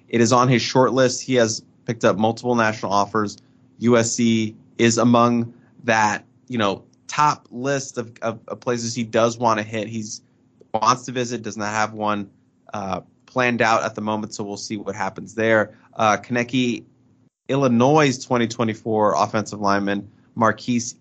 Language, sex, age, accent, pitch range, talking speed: English, male, 20-39, American, 110-125 Hz, 165 wpm